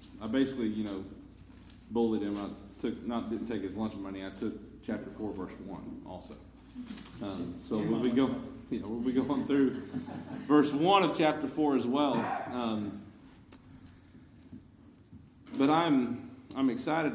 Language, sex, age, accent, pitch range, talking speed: English, male, 40-59, American, 105-135 Hz, 155 wpm